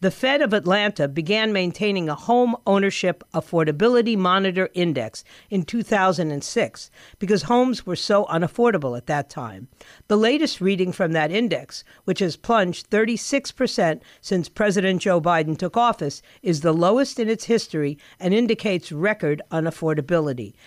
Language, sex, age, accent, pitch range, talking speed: English, female, 50-69, American, 165-225 Hz, 140 wpm